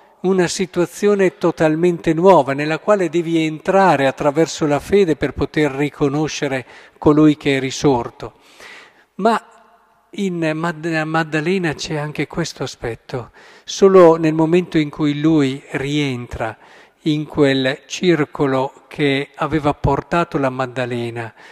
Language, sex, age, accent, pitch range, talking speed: Italian, male, 50-69, native, 140-170 Hz, 110 wpm